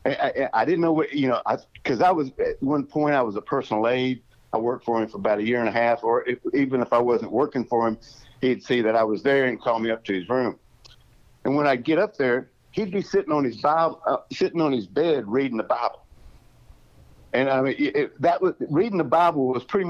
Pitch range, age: 115-145 Hz, 60-79